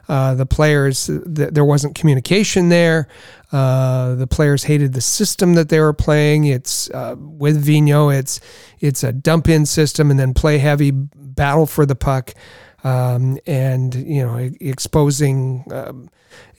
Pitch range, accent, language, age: 135-155 Hz, American, English, 40-59